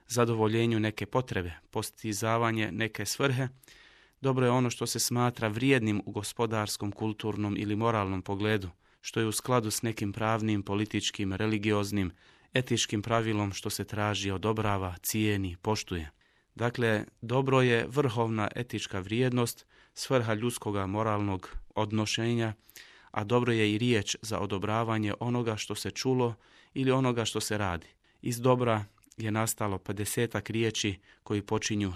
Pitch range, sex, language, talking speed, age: 105-120 Hz, male, Croatian, 135 wpm, 30-49